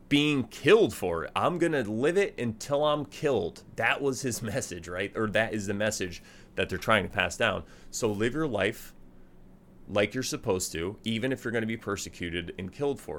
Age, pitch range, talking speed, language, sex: 30-49, 90-115 Hz, 210 wpm, English, male